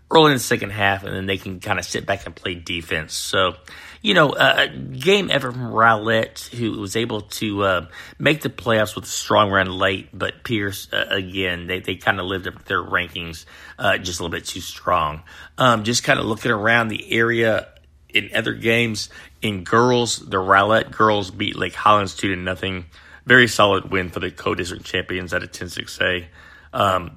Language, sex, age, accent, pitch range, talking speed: English, male, 30-49, American, 95-115 Hz, 200 wpm